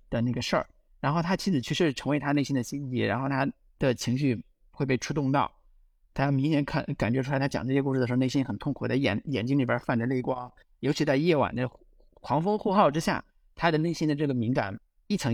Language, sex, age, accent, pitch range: Chinese, male, 50-69, native, 120-155 Hz